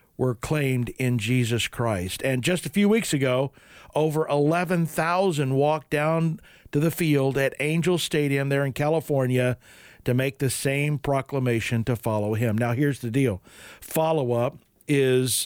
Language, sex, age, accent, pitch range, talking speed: English, male, 50-69, American, 130-165 Hz, 150 wpm